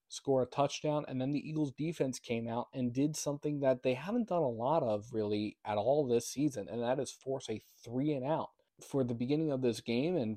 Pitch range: 120-135 Hz